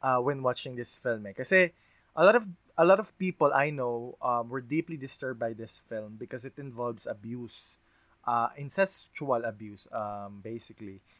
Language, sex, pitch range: Filipino, male, 110-140 Hz